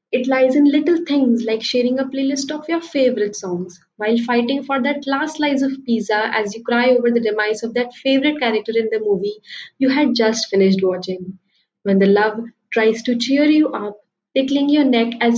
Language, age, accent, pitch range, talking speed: English, 20-39, Indian, 215-265 Hz, 200 wpm